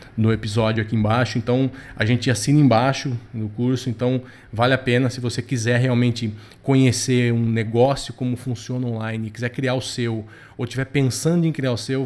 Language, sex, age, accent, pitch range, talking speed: Portuguese, male, 20-39, Brazilian, 115-135 Hz, 180 wpm